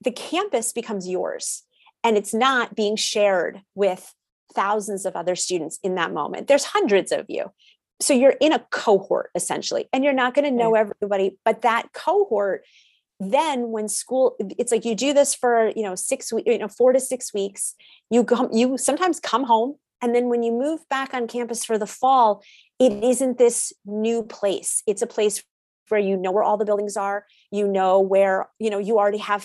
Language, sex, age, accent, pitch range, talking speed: English, female, 30-49, American, 195-245 Hz, 200 wpm